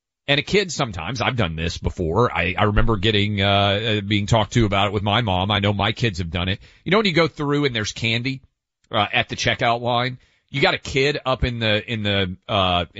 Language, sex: English, male